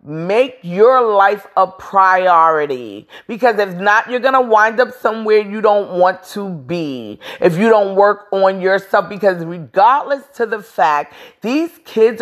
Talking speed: 155 wpm